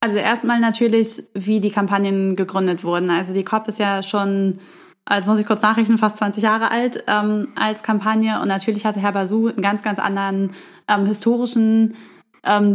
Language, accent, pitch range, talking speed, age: German, German, 195-215 Hz, 180 wpm, 20-39